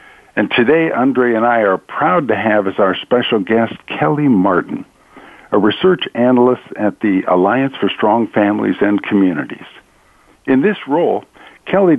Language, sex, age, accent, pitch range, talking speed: English, male, 60-79, American, 105-140 Hz, 150 wpm